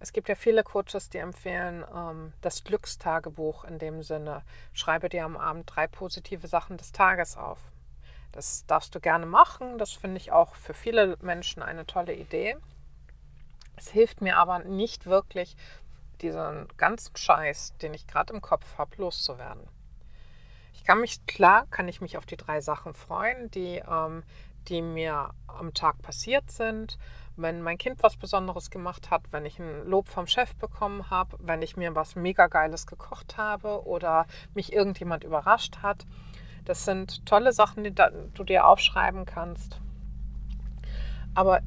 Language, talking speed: German, 155 wpm